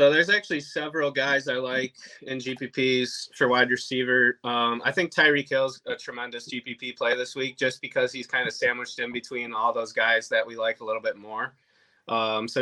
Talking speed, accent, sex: 205 wpm, American, male